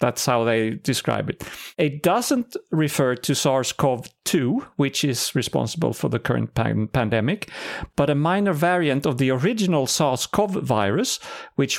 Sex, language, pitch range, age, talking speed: male, English, 125-170 Hz, 40-59, 135 wpm